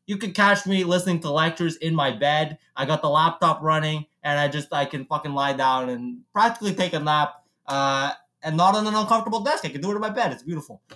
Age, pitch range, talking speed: 20-39, 155-205 Hz, 240 wpm